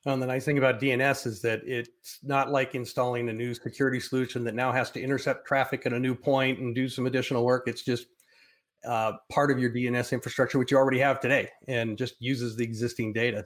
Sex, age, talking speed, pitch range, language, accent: male, 40-59, 230 wpm, 120-150 Hz, English, American